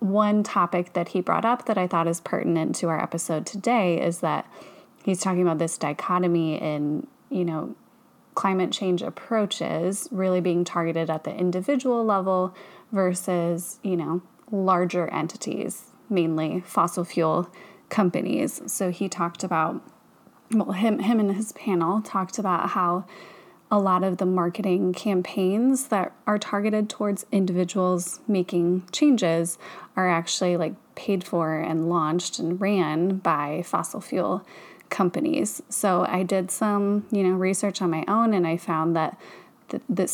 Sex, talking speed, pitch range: female, 145 wpm, 170-205 Hz